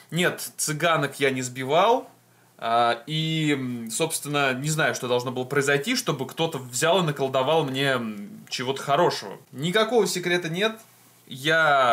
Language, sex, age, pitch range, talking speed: Russian, male, 20-39, 130-180 Hz, 125 wpm